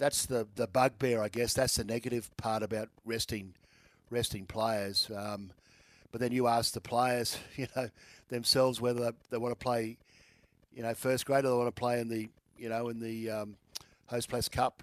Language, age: English, 50-69